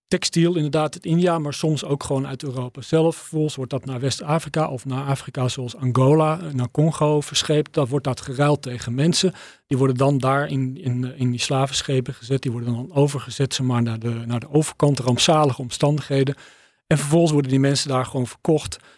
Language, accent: Dutch, Dutch